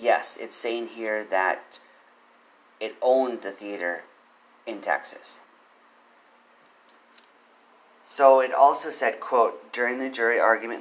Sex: male